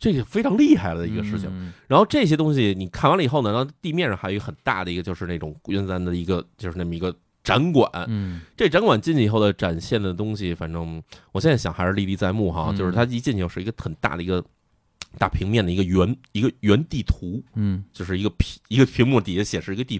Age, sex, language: 30-49, male, Chinese